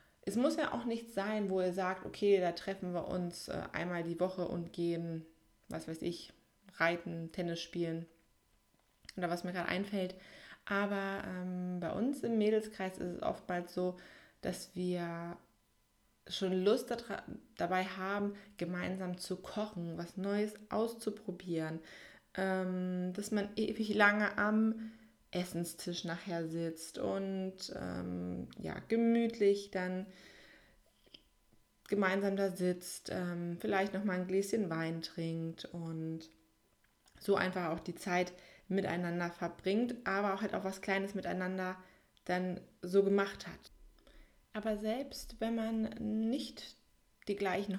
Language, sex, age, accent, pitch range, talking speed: German, female, 20-39, German, 175-205 Hz, 130 wpm